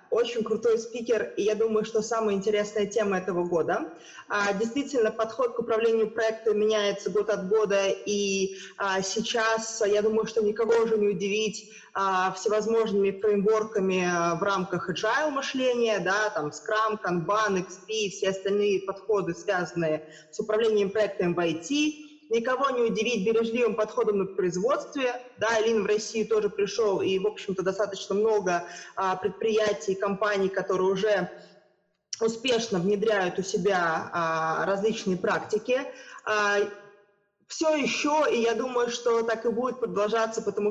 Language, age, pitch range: Russian, 20-39, 195-225 Hz